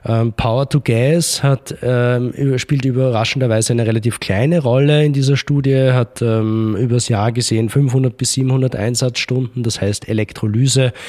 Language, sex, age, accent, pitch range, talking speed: German, male, 20-39, German, 110-125 Hz, 115 wpm